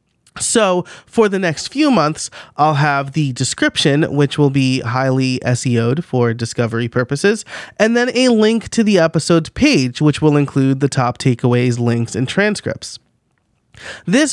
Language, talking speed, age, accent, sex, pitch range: English, 150 wpm, 30-49, American, male, 135-180 Hz